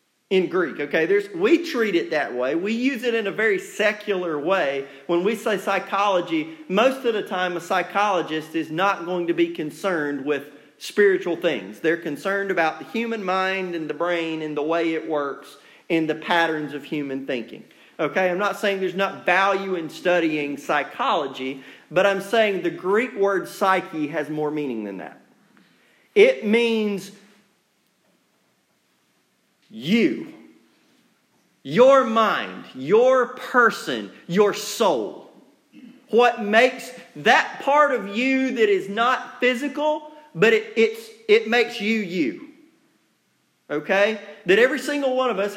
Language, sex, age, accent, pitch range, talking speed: English, male, 40-59, American, 170-245 Hz, 145 wpm